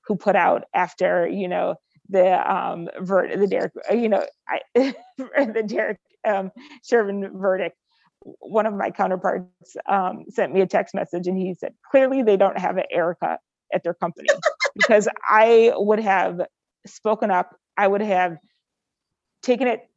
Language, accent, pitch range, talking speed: English, American, 185-225 Hz, 155 wpm